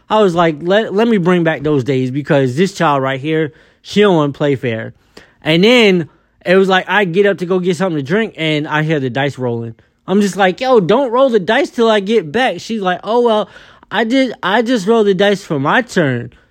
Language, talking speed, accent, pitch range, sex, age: English, 245 wpm, American, 140-200 Hz, male, 20-39